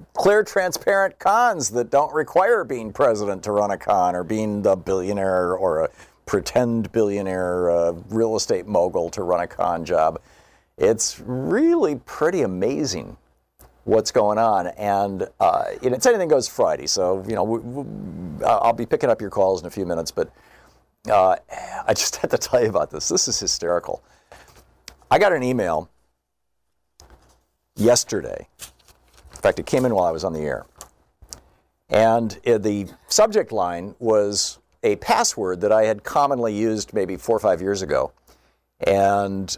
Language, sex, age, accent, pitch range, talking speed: English, male, 50-69, American, 90-120 Hz, 160 wpm